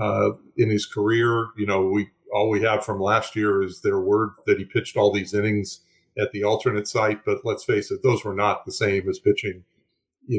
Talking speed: 215 wpm